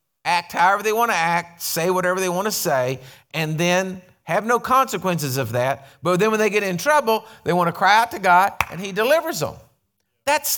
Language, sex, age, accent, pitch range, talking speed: English, male, 50-69, American, 180-255 Hz, 215 wpm